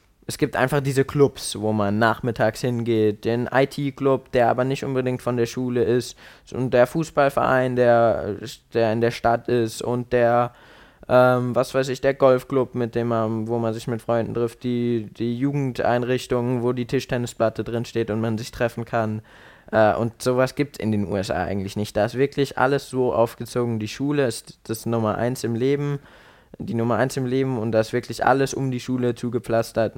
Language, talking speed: German, 190 wpm